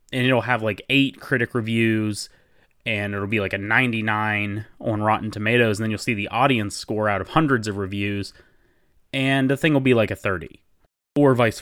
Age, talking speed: 20-39, 195 wpm